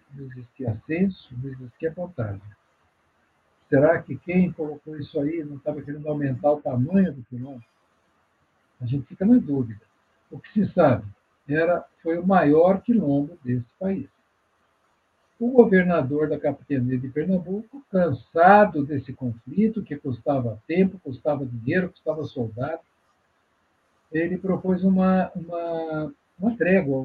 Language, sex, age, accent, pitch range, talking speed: Portuguese, male, 60-79, Brazilian, 115-185 Hz, 130 wpm